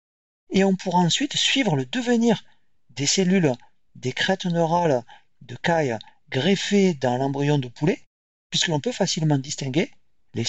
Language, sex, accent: French, male, French